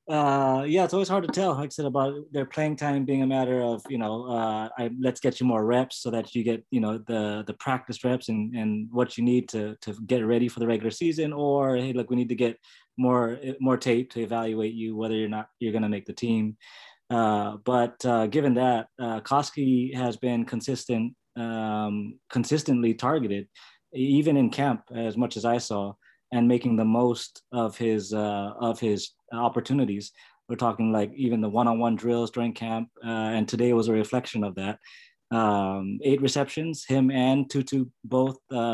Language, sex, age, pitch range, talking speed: English, male, 20-39, 110-130 Hz, 195 wpm